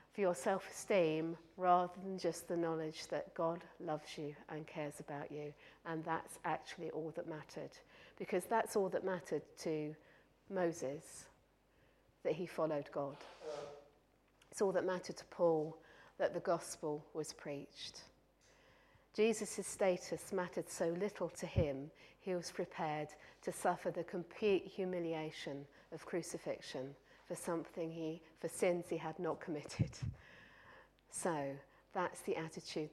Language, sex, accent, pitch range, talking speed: English, female, British, 160-190 Hz, 135 wpm